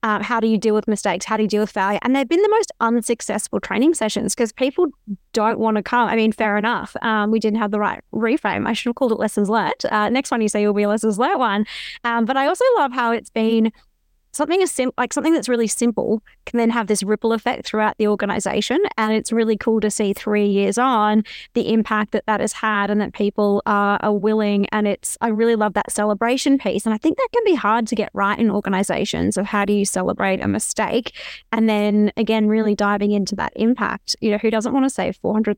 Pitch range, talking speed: 210-235 Hz, 245 wpm